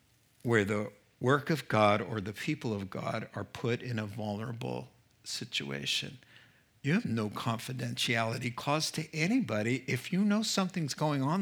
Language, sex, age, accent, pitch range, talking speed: English, male, 50-69, American, 120-180 Hz, 155 wpm